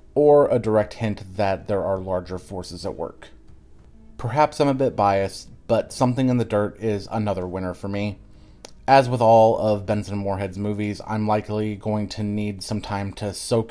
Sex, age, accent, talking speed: male, 30-49, American, 190 wpm